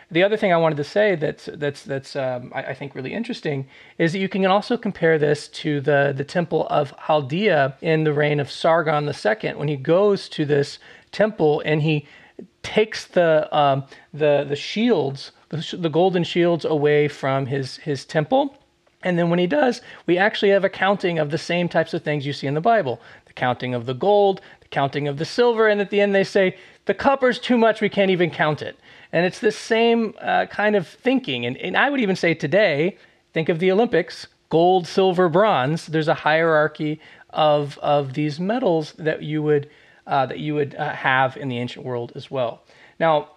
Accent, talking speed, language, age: American, 205 wpm, English, 40-59